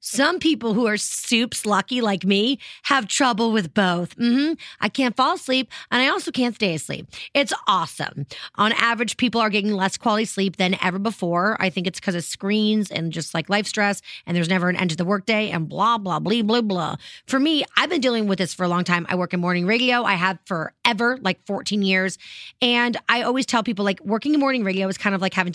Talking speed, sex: 230 wpm, female